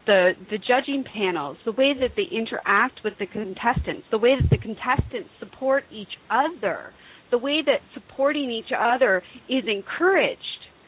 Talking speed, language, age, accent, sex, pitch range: 155 wpm, English, 40-59, American, female, 205-250 Hz